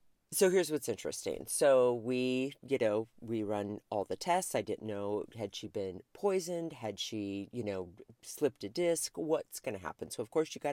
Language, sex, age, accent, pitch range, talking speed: English, female, 40-59, American, 110-175 Hz, 200 wpm